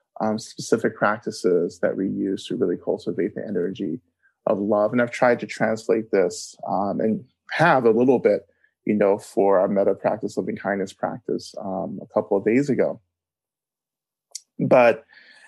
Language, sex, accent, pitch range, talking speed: English, male, American, 110-150 Hz, 160 wpm